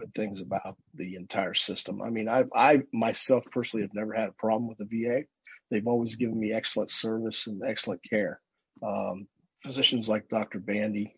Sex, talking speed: male, 175 wpm